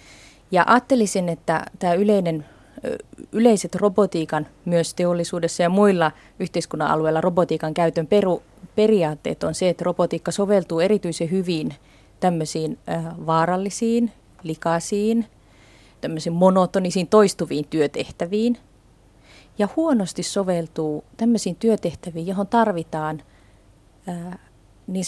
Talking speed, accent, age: 90 wpm, native, 30-49